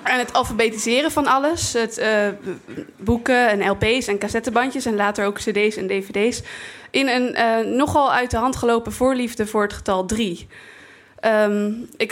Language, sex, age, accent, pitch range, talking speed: Dutch, female, 20-39, Dutch, 210-250 Hz, 165 wpm